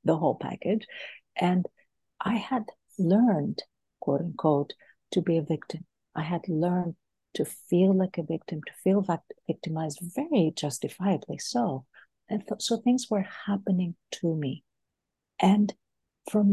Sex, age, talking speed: female, 50-69, 130 wpm